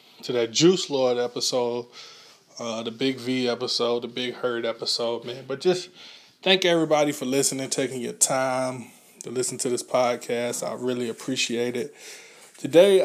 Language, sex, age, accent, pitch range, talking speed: English, male, 20-39, American, 120-145 Hz, 155 wpm